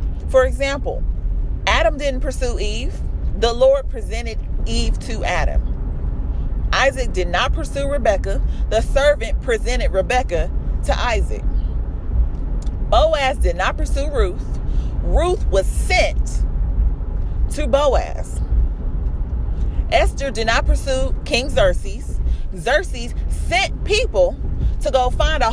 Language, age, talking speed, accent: English, 40-59, 110 wpm, American